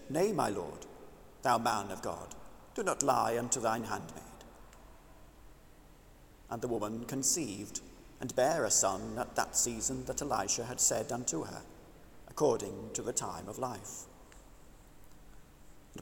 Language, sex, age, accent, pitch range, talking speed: English, male, 40-59, British, 110-140 Hz, 140 wpm